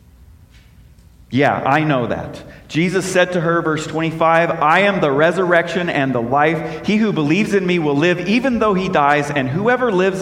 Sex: male